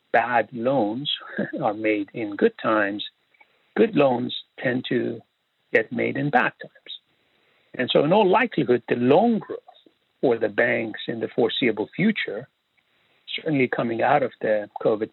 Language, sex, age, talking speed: English, male, 60-79, 145 wpm